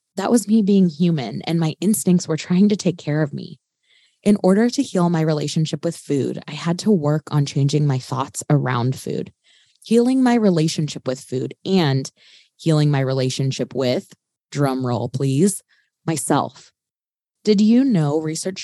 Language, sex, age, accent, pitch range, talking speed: English, female, 20-39, American, 145-190 Hz, 165 wpm